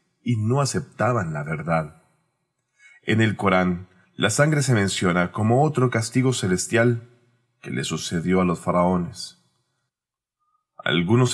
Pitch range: 95-130 Hz